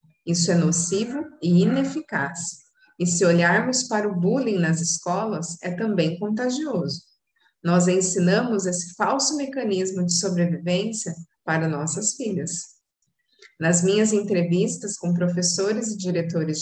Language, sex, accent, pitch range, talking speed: Portuguese, female, Brazilian, 170-215 Hz, 120 wpm